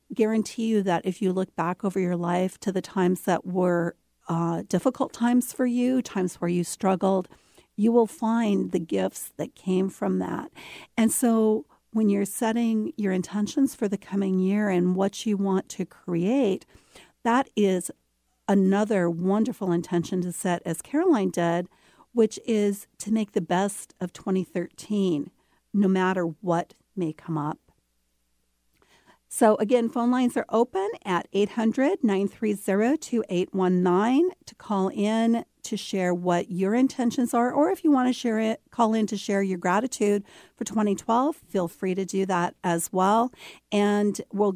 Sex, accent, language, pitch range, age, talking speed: female, American, English, 180-230 Hz, 50-69, 160 wpm